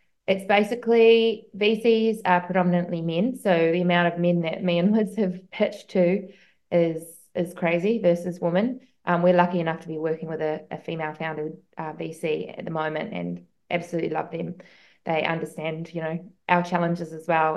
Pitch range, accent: 165-195 Hz, Australian